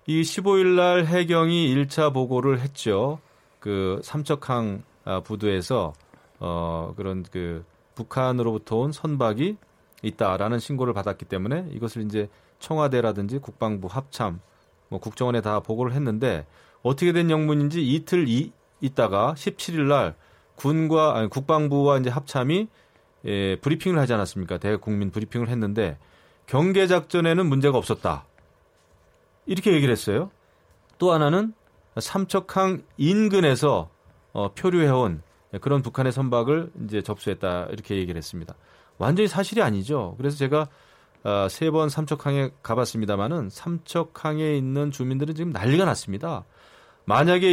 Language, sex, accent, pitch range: Korean, male, native, 105-155 Hz